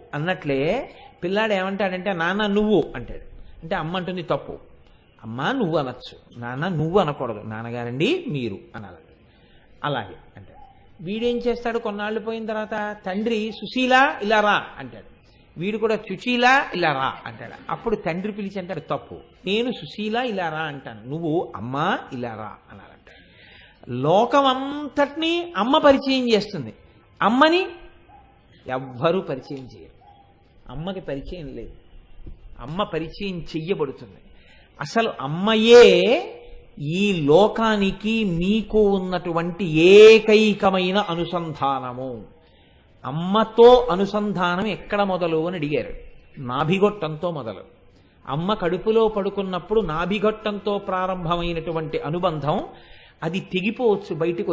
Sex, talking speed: male, 100 wpm